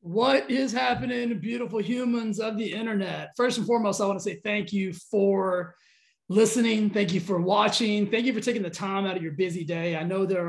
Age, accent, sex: 20-39, American, male